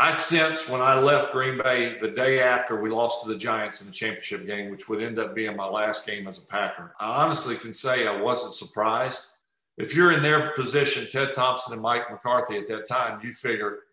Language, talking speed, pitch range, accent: English, 225 wpm, 120-160 Hz, American